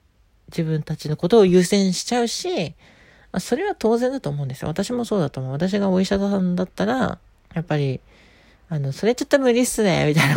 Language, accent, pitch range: Japanese, native, 160-220 Hz